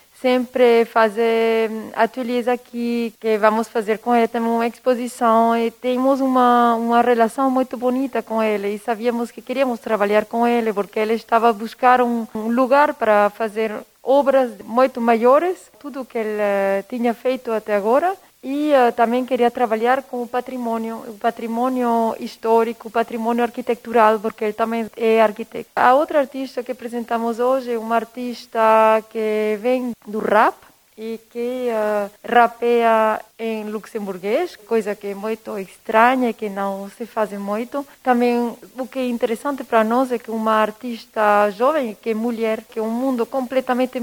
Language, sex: Portuguese, female